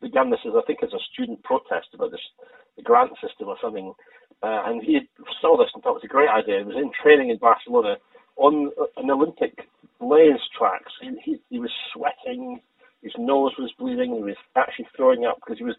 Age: 40-59